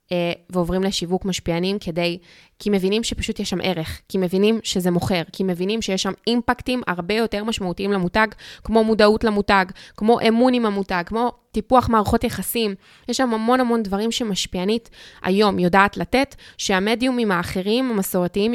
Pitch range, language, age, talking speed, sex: 180-230 Hz, Hebrew, 20-39, 150 wpm, female